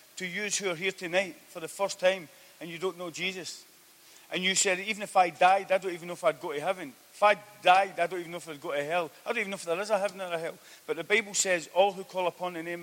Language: English